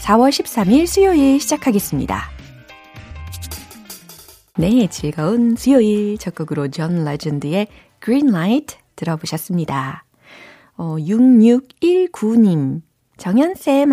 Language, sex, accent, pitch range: Korean, female, native, 155-215 Hz